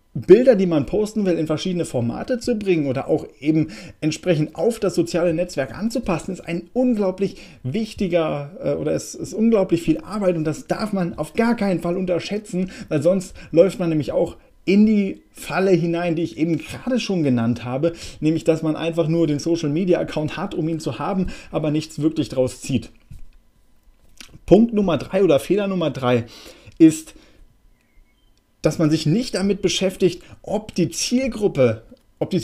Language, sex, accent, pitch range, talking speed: German, male, German, 150-185 Hz, 170 wpm